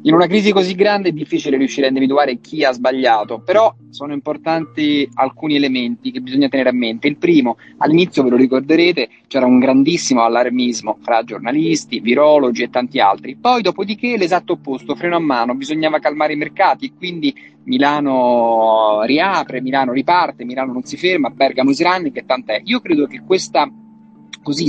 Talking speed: 170 wpm